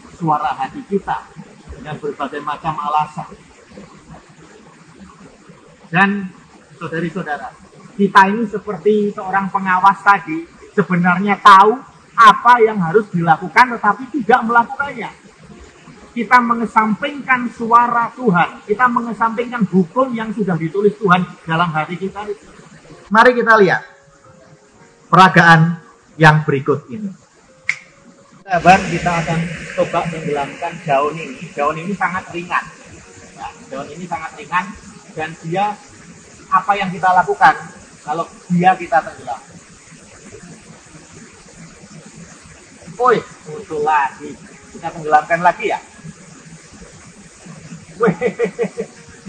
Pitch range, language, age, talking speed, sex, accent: 170-220 Hz, Indonesian, 40-59, 95 wpm, male, native